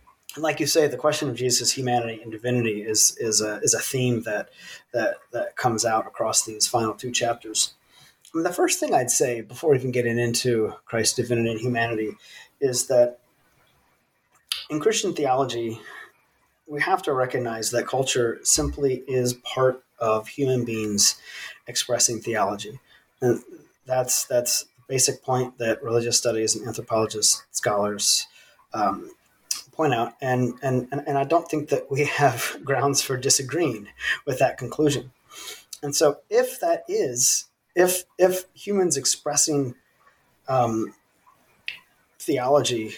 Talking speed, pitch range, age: 135 wpm, 115-140 Hz, 30-49